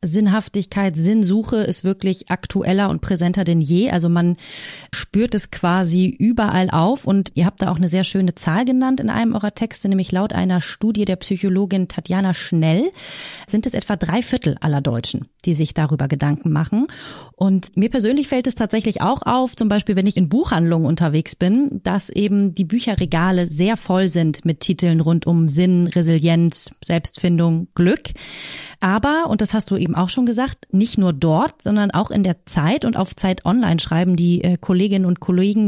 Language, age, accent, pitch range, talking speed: German, 30-49, German, 175-215 Hz, 180 wpm